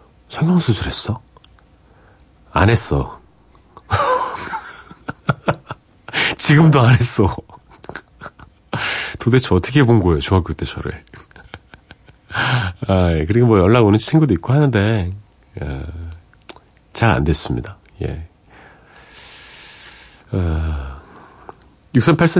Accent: native